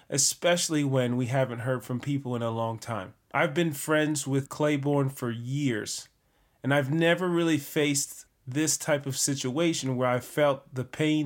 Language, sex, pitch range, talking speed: English, male, 125-145 Hz, 170 wpm